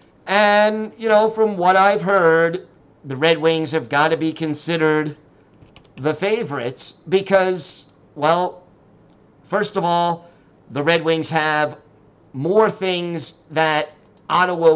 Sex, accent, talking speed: male, American, 120 wpm